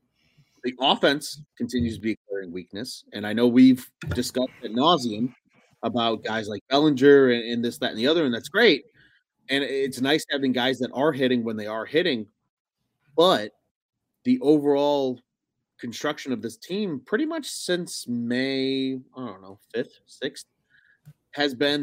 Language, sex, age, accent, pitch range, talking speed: English, male, 30-49, American, 125-160 Hz, 160 wpm